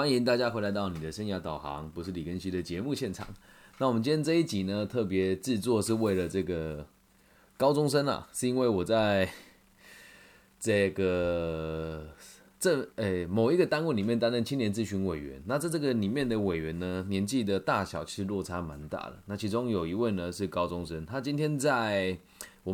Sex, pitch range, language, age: male, 95-125 Hz, Chinese, 20-39